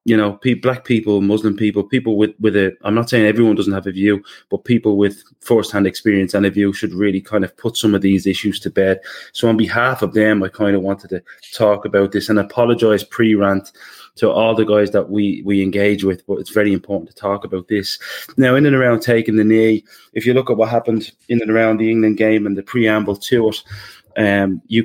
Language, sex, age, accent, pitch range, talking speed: English, male, 20-39, British, 100-115 Hz, 235 wpm